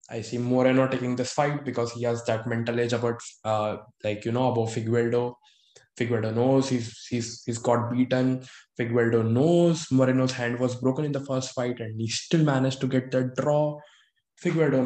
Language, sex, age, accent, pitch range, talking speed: English, male, 20-39, Indian, 120-140 Hz, 180 wpm